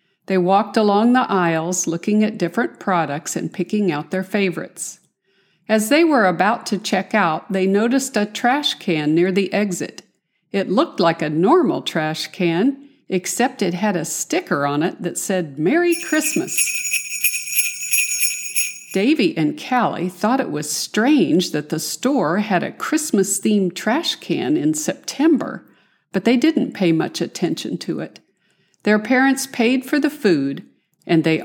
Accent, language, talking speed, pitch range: American, English, 155 wpm, 170-255 Hz